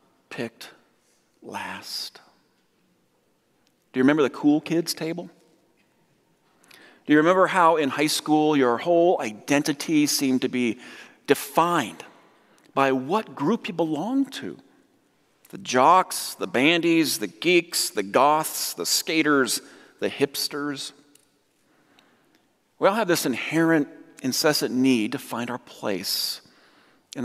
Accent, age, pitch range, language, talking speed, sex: American, 40-59, 130-160 Hz, English, 115 wpm, male